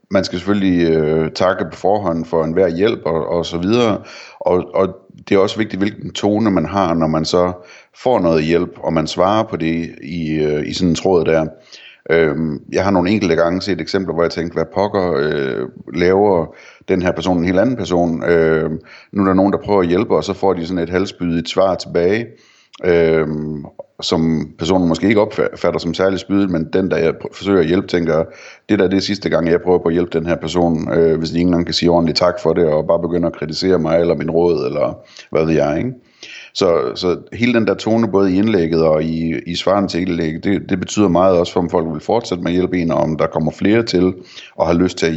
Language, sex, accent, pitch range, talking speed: Danish, male, native, 80-95 Hz, 240 wpm